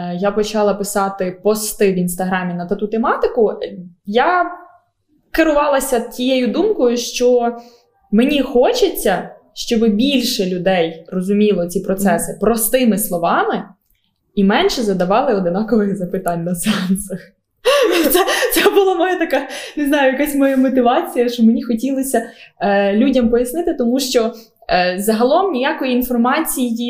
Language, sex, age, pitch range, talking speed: Ukrainian, female, 20-39, 200-265 Hz, 120 wpm